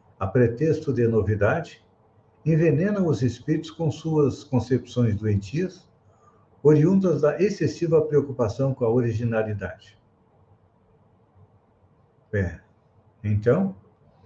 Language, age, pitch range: Portuguese, 60-79, 110-140 Hz